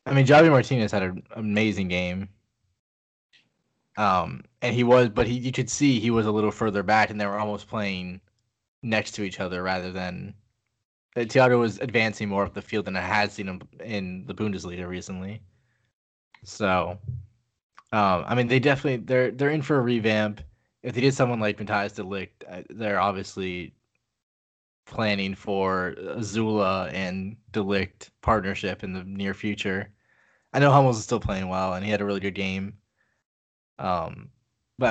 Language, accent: English, American